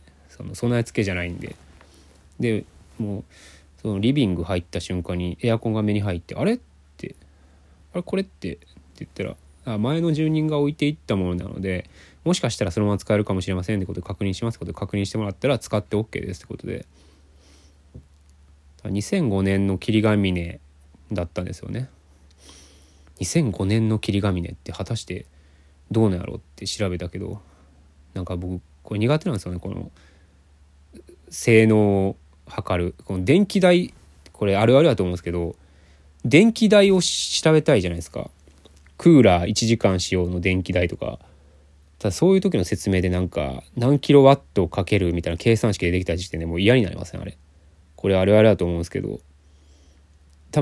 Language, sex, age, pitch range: Japanese, male, 20-39, 75-110 Hz